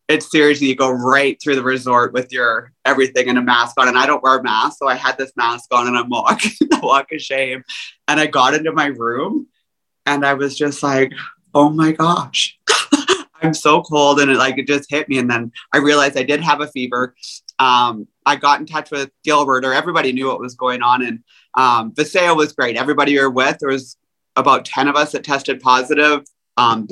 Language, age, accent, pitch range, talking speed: English, 30-49, American, 125-145 Hz, 225 wpm